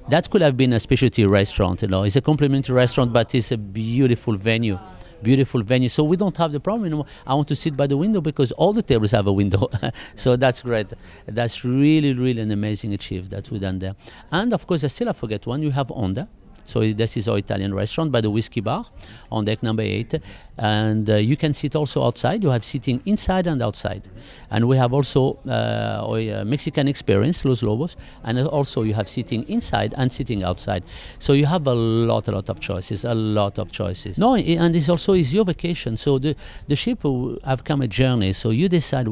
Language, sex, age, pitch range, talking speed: English, male, 50-69, 110-145 Hz, 215 wpm